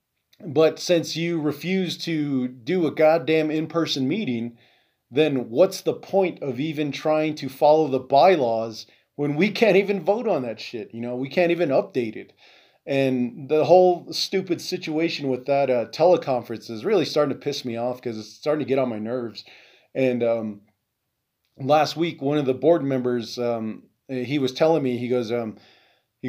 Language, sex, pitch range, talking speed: English, male, 120-155 Hz, 180 wpm